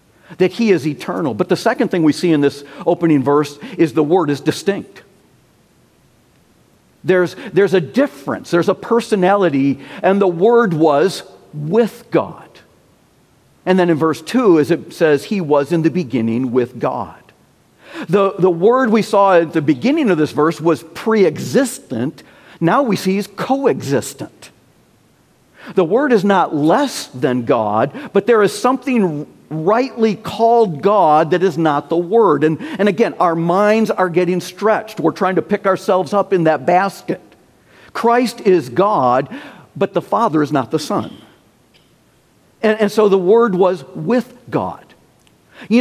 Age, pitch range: 50-69, 160-220 Hz